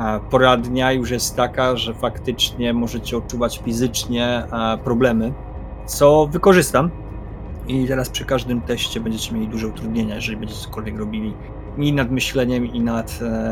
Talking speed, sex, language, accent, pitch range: 135 wpm, male, Polish, native, 105-130 Hz